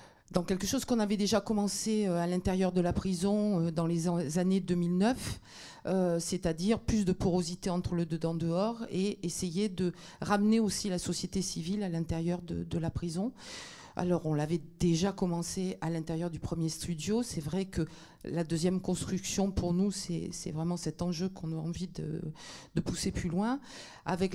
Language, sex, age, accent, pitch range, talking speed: French, female, 50-69, French, 170-195 Hz, 170 wpm